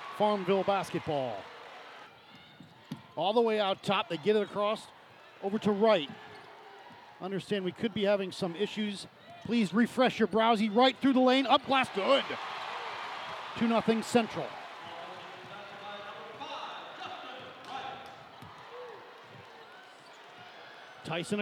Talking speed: 100 wpm